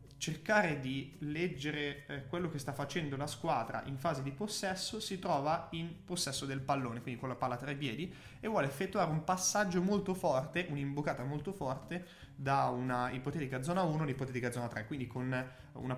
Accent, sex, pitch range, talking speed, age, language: native, male, 120-165 Hz, 175 wpm, 20-39, Italian